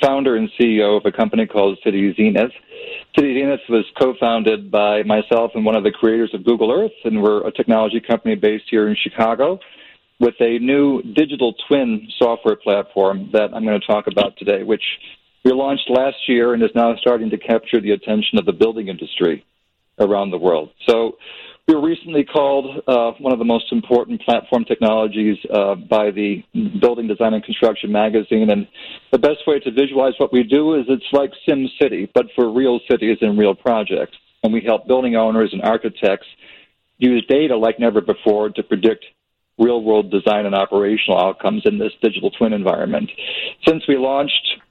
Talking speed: 180 wpm